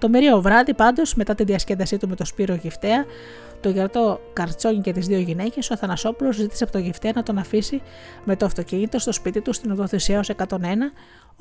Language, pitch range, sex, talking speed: Greek, 185-225 Hz, female, 200 wpm